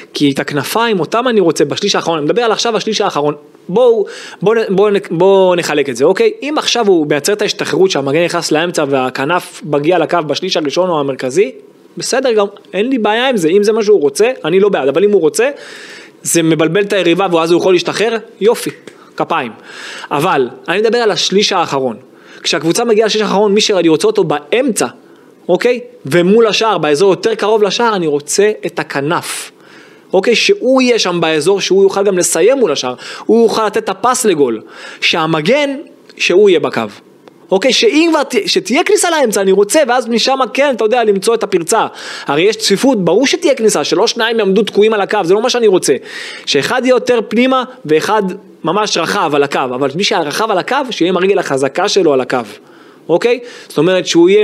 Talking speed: 170 wpm